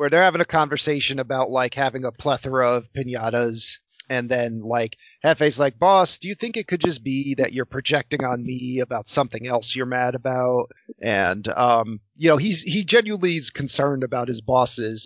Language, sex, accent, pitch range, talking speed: English, male, American, 115-145 Hz, 190 wpm